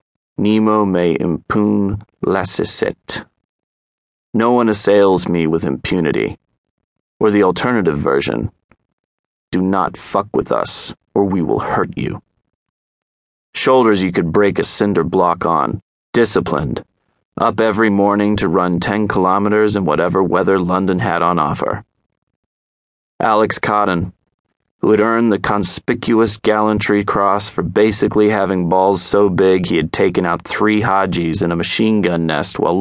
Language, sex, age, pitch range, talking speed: English, male, 30-49, 85-105 Hz, 135 wpm